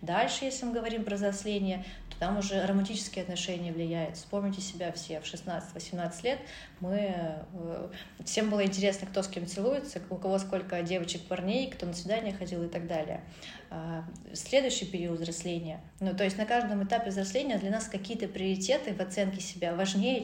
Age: 30-49